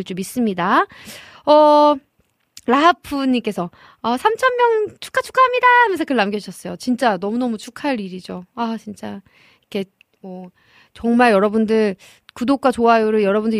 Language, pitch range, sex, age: Korean, 205-305 Hz, female, 20-39